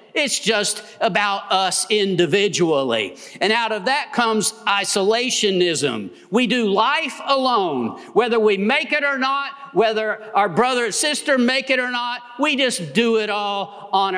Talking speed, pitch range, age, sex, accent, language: 150 wpm, 190-265 Hz, 50-69, male, American, English